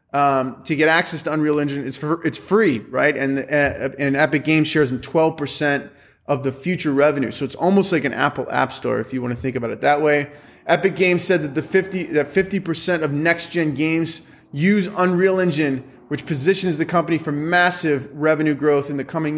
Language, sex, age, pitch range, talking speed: English, male, 20-39, 140-170 Hz, 205 wpm